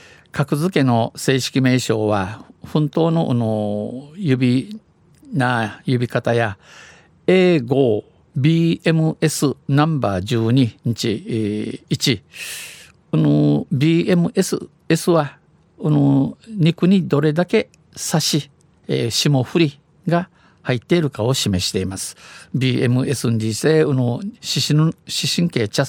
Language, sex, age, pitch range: Japanese, male, 50-69, 115-155 Hz